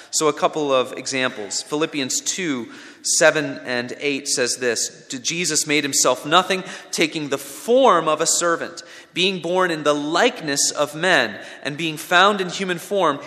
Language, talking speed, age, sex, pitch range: English, 160 wpm, 30-49, male, 145-200 Hz